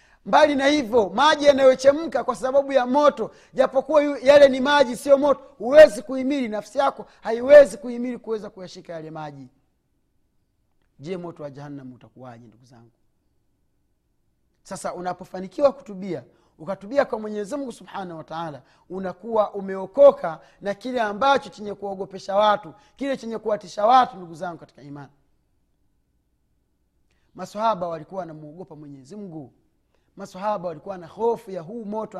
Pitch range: 140-220 Hz